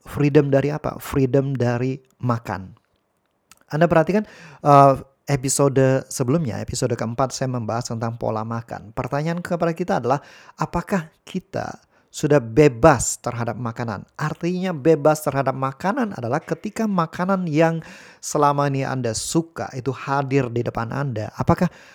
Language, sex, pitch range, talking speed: Indonesian, male, 125-170 Hz, 125 wpm